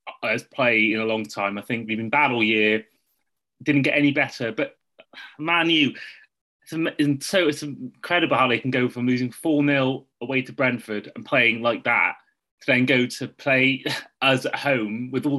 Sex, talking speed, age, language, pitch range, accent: male, 190 wpm, 20-39, English, 115-145 Hz, British